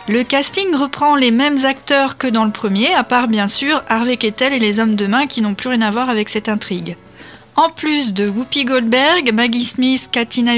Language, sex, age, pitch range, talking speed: French, female, 40-59, 220-265 Hz, 215 wpm